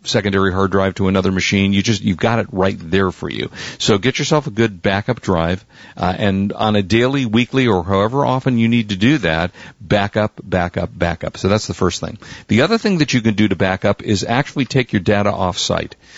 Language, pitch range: English, 95-120 Hz